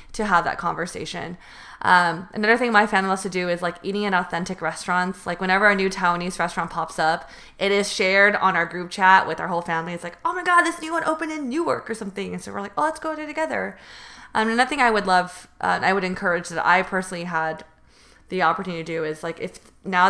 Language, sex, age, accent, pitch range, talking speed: English, female, 20-39, American, 170-210 Hz, 245 wpm